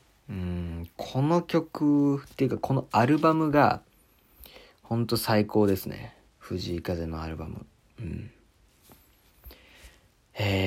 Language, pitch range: Japanese, 95-125 Hz